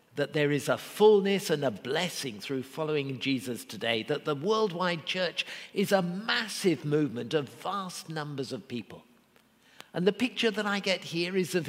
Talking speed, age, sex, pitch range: 175 wpm, 50-69, male, 135-200 Hz